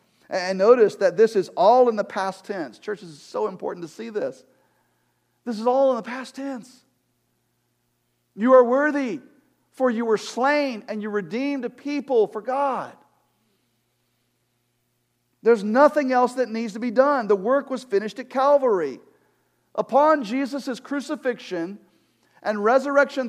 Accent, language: American, English